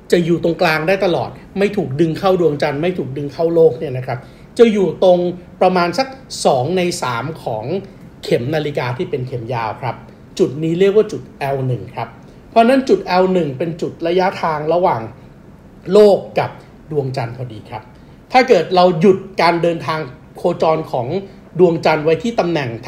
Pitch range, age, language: 145-190 Hz, 60-79, Thai